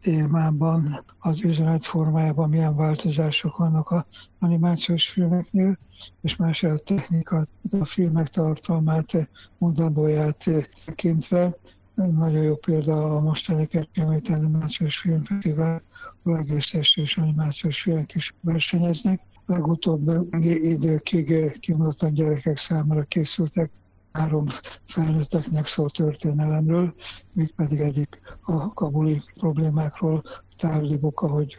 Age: 60-79